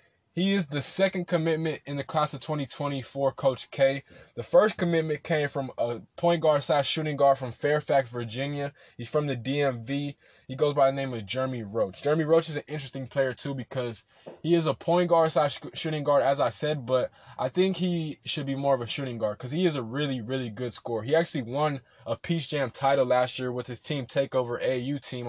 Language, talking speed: English, 220 wpm